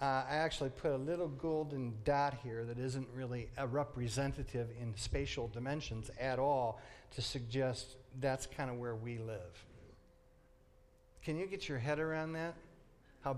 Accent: American